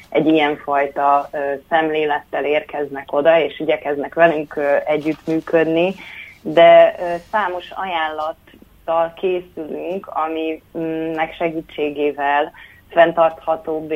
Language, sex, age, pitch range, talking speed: Hungarian, female, 30-49, 145-165 Hz, 70 wpm